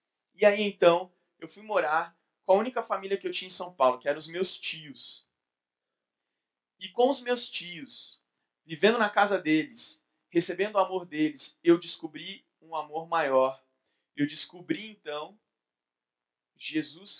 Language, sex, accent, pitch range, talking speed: Portuguese, male, Brazilian, 145-200 Hz, 150 wpm